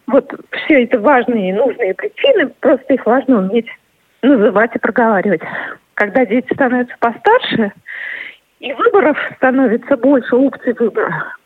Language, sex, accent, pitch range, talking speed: Russian, female, native, 230-315 Hz, 125 wpm